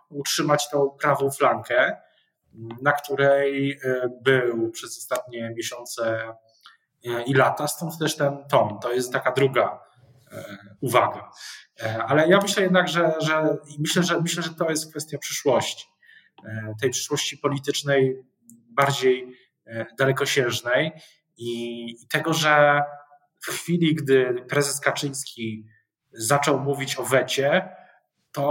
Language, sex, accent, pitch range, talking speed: Polish, male, native, 125-145 Hz, 110 wpm